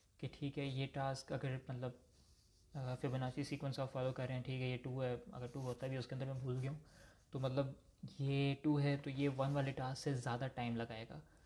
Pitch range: 125-145 Hz